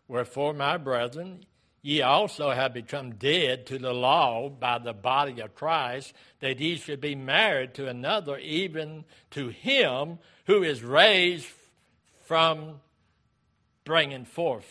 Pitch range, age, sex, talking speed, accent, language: 115-150 Hz, 60-79, male, 130 wpm, American, English